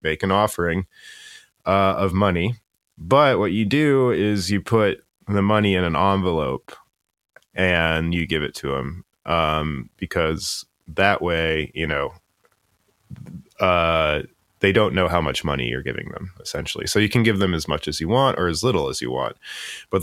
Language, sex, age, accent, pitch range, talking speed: English, male, 30-49, American, 80-105 Hz, 175 wpm